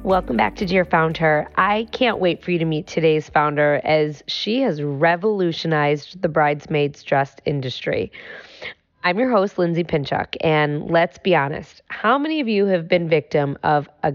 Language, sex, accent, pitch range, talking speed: English, female, American, 155-190 Hz, 170 wpm